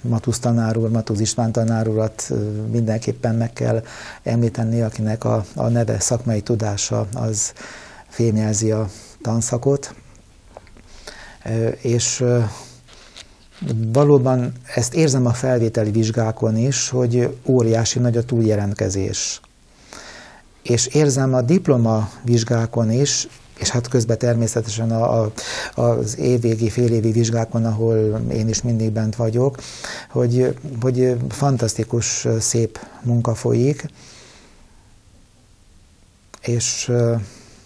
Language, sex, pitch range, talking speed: Hungarian, male, 110-120 Hz, 95 wpm